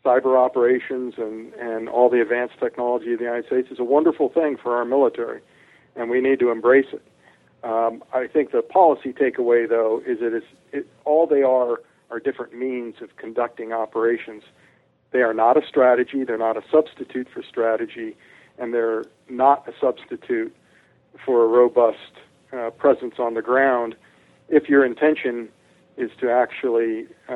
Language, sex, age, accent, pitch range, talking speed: English, male, 50-69, American, 115-130 Hz, 165 wpm